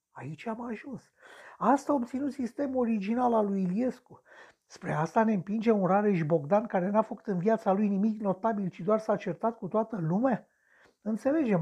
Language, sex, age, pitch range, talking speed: Romanian, male, 60-79, 165-230 Hz, 175 wpm